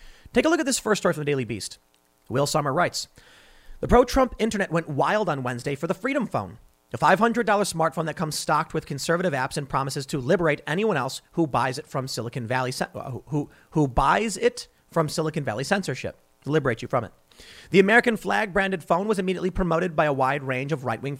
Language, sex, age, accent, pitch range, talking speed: English, male, 40-59, American, 135-190 Hz, 205 wpm